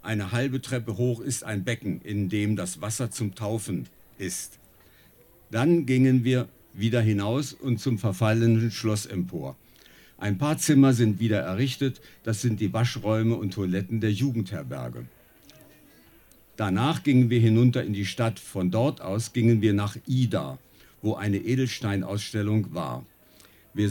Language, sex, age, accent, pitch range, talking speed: German, male, 50-69, German, 105-130 Hz, 145 wpm